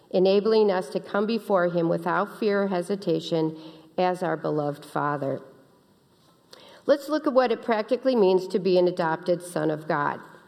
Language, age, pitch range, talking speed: English, 50-69, 175-230 Hz, 160 wpm